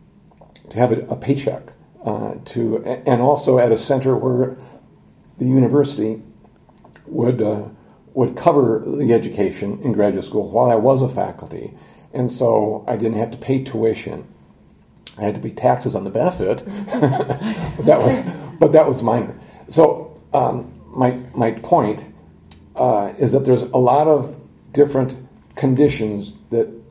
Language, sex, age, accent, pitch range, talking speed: English, male, 50-69, American, 110-135 Hz, 145 wpm